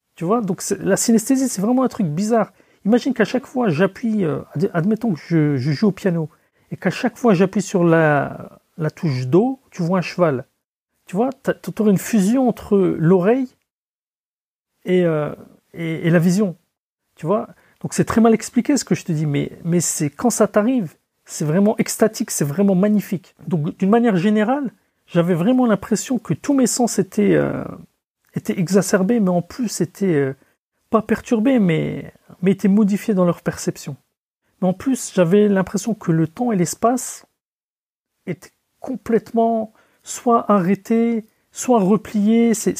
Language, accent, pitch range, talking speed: French, French, 170-225 Hz, 170 wpm